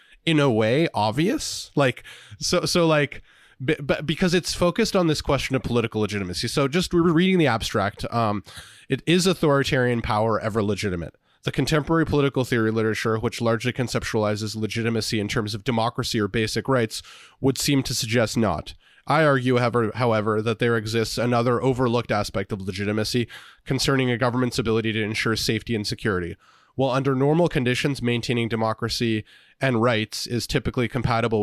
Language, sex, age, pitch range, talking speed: English, male, 20-39, 110-130 Hz, 160 wpm